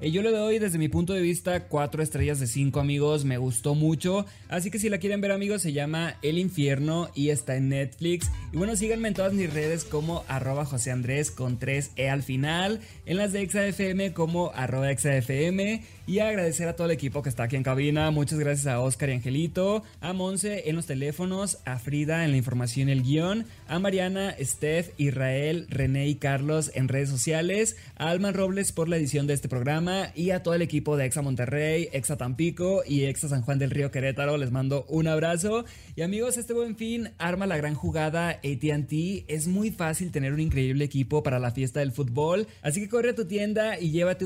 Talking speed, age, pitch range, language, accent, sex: 210 wpm, 20-39, 140-185 Hz, Spanish, Mexican, male